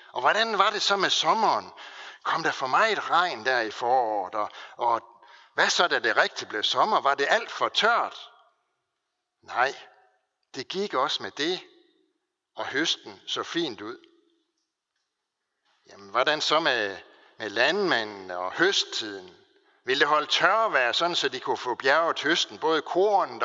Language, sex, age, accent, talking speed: Danish, male, 60-79, native, 160 wpm